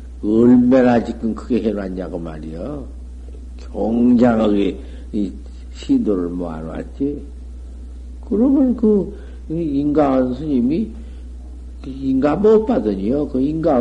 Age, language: 50-69, Korean